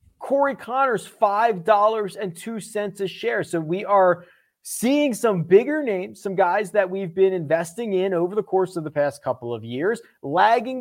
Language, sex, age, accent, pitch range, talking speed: English, male, 30-49, American, 170-230 Hz, 160 wpm